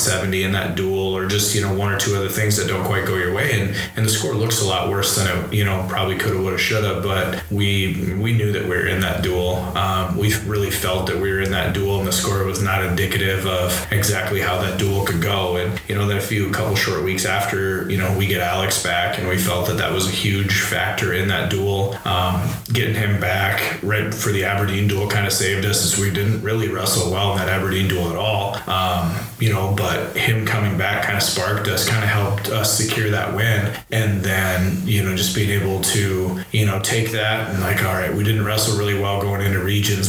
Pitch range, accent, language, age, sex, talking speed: 95-105 Hz, American, English, 30-49, male, 250 wpm